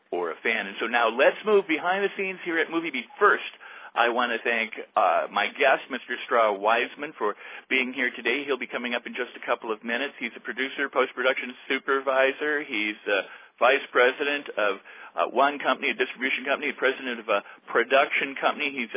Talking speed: 195 wpm